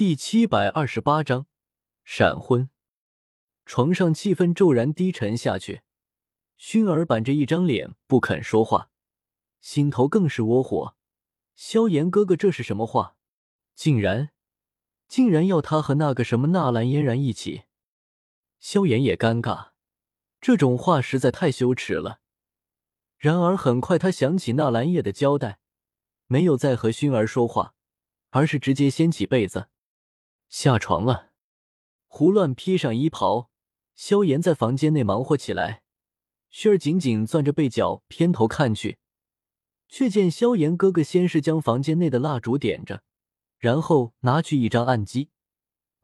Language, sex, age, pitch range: Chinese, male, 20-39, 115-165 Hz